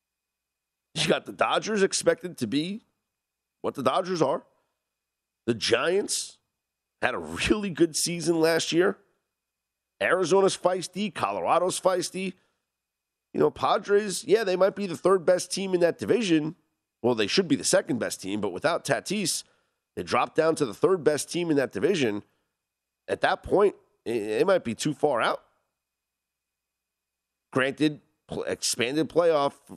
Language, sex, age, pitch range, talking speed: English, male, 40-59, 95-160 Hz, 145 wpm